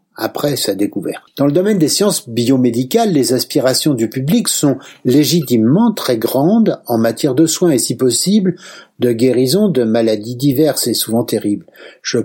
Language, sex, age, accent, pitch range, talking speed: French, male, 60-79, French, 120-165 Hz, 160 wpm